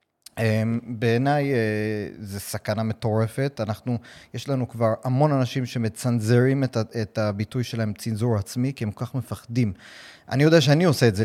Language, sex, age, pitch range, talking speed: Hebrew, male, 30-49, 110-140 Hz, 145 wpm